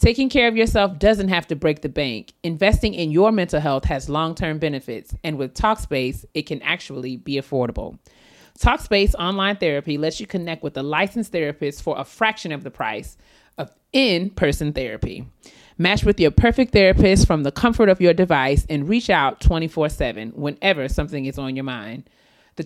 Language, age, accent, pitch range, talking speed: English, 30-49, American, 140-190 Hz, 175 wpm